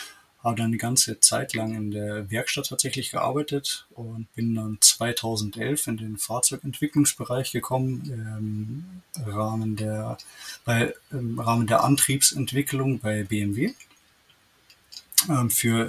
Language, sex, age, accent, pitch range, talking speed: German, male, 20-39, German, 110-135 Hz, 115 wpm